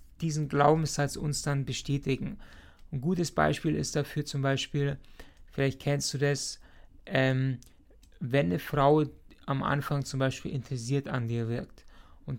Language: German